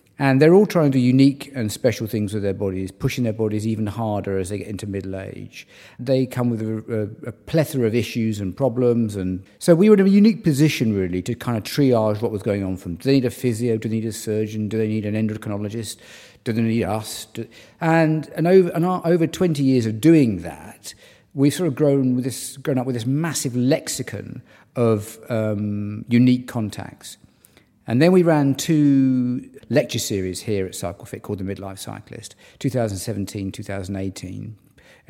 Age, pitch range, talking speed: 50-69, 100-130 Hz, 195 wpm